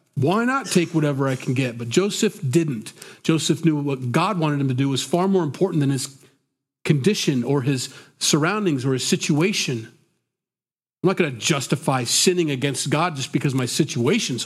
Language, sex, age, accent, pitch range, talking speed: English, male, 40-59, American, 130-165 Hz, 180 wpm